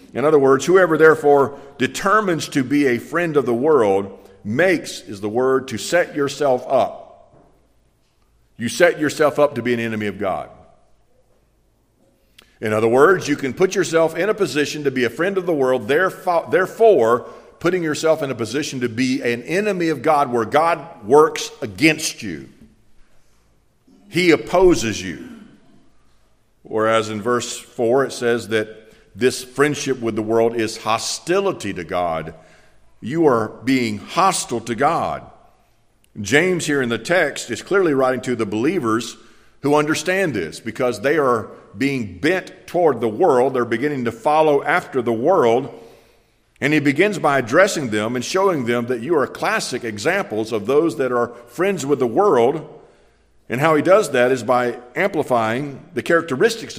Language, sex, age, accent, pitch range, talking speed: English, male, 50-69, American, 115-155 Hz, 160 wpm